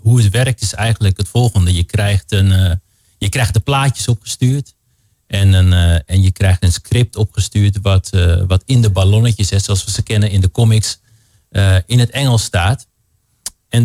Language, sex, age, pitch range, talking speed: Dutch, male, 40-59, 100-115 Hz, 195 wpm